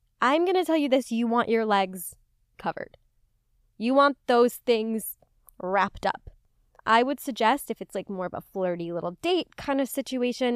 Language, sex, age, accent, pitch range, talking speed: English, female, 20-39, American, 200-255 Hz, 175 wpm